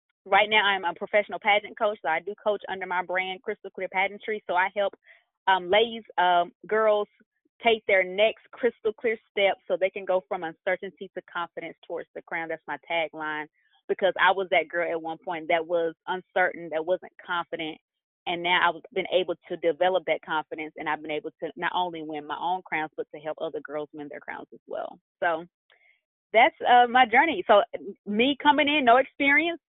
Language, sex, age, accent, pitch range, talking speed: English, female, 20-39, American, 170-220 Hz, 200 wpm